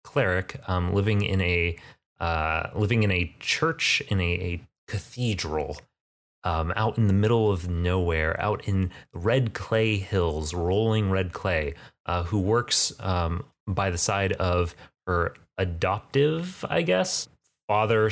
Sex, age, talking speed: male, 30-49, 140 wpm